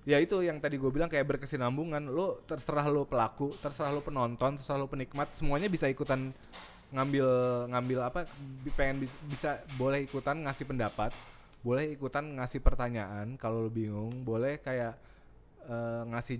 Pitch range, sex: 120-145 Hz, male